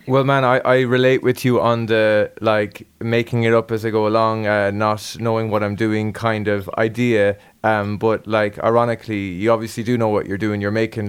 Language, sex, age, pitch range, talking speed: English, male, 20-39, 105-120 Hz, 210 wpm